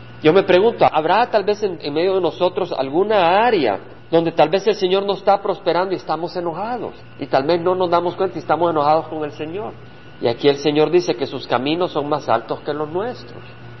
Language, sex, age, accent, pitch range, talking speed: Spanish, male, 50-69, Mexican, 150-210 Hz, 220 wpm